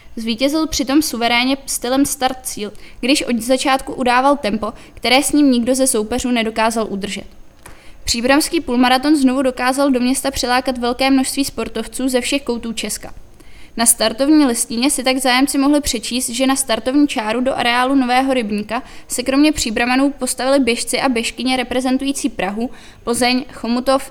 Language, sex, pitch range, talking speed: Czech, female, 235-270 Hz, 150 wpm